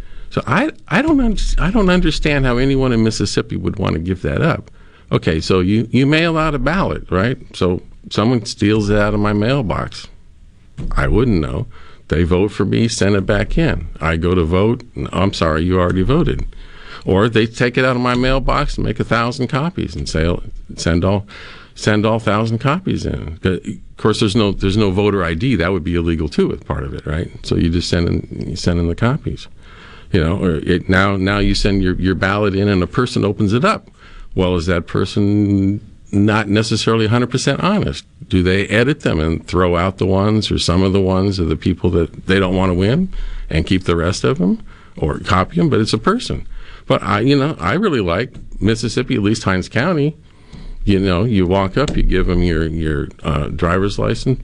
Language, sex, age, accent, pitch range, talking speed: English, male, 50-69, American, 90-120 Hz, 215 wpm